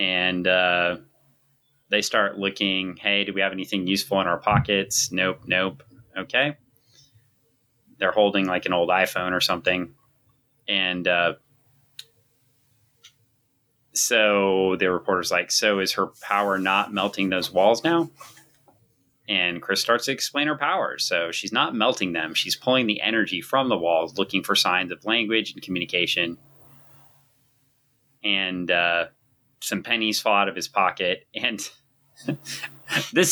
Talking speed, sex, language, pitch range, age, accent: 140 wpm, male, English, 95-130 Hz, 30-49, American